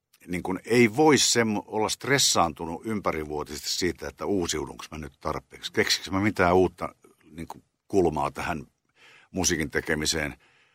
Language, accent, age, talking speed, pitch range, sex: Finnish, native, 60-79, 130 wpm, 85-110 Hz, male